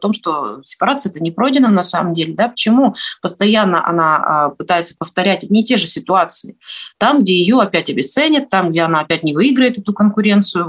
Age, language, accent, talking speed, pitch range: 30-49, Russian, native, 185 wpm, 170-215 Hz